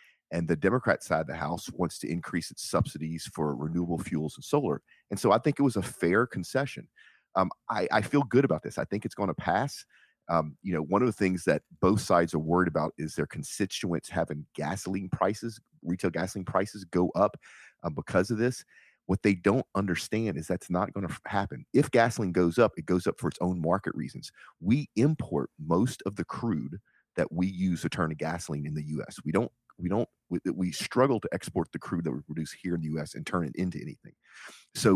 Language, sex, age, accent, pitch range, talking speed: English, male, 40-59, American, 80-100 Hz, 220 wpm